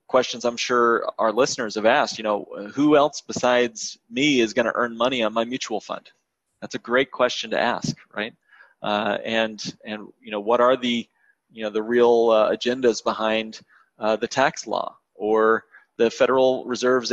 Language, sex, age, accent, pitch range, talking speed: English, male, 30-49, American, 110-125 Hz, 180 wpm